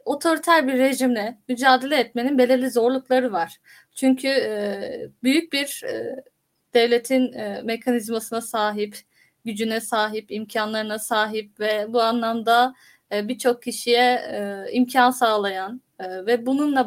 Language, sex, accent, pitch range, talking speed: Turkish, female, native, 225-275 Hz, 95 wpm